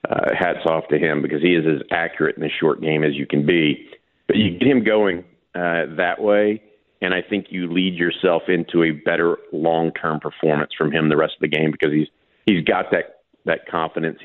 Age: 50-69